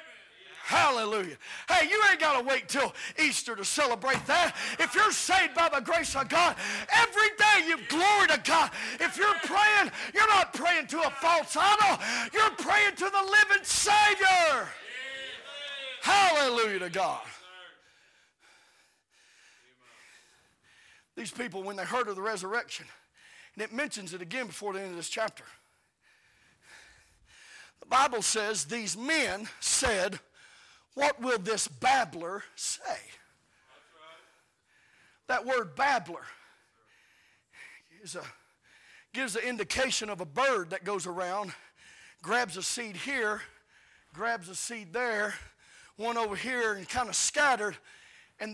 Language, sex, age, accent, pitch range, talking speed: English, male, 50-69, American, 220-370 Hz, 130 wpm